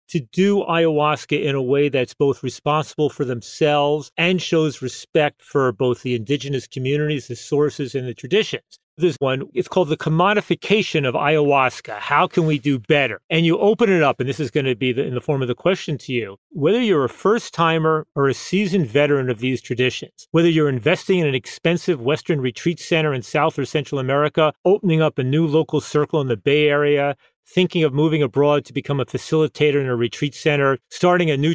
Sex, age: male, 40-59